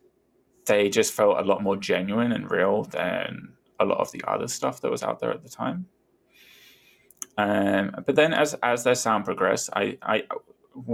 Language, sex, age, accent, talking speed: English, male, 20-39, British, 180 wpm